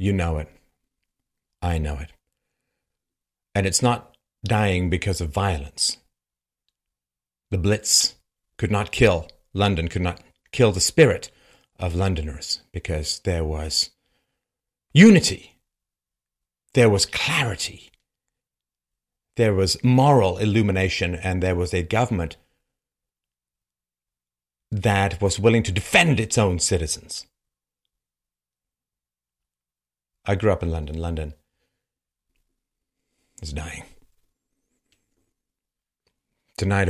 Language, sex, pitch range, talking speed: English, male, 80-100 Hz, 95 wpm